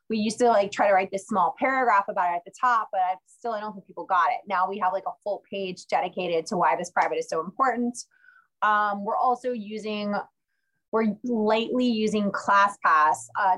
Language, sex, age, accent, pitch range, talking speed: English, female, 20-39, American, 185-225 Hz, 210 wpm